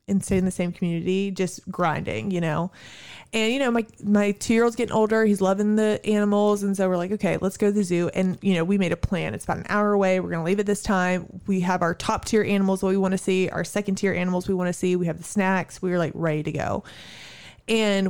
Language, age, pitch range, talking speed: English, 20-39, 180-210 Hz, 260 wpm